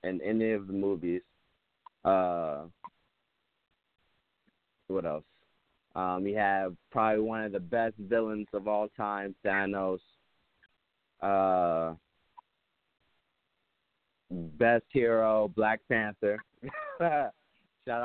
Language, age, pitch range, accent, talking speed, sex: English, 20-39, 95-110 Hz, American, 90 wpm, male